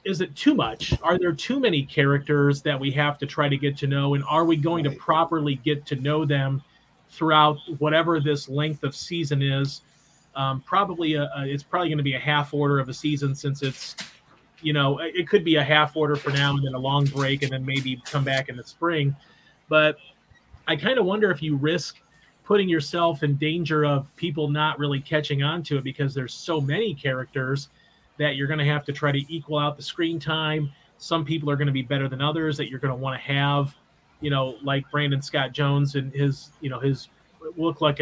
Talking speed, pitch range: 225 wpm, 140-155 Hz